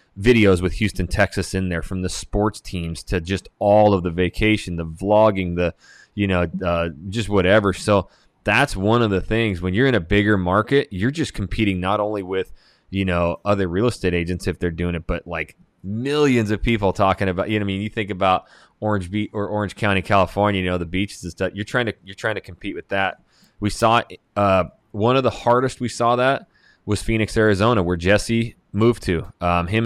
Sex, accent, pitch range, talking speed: male, American, 90-110 Hz, 215 wpm